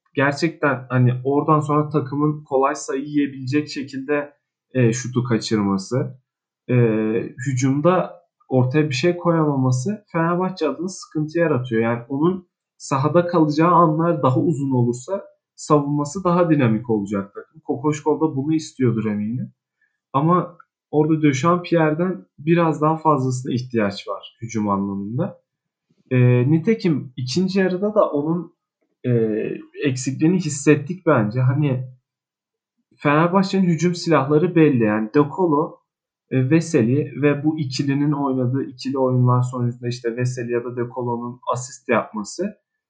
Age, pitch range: 40-59, 125-165 Hz